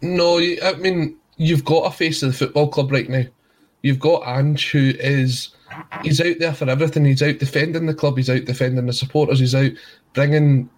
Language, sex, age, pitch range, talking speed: English, male, 20-39, 135-160 Hz, 200 wpm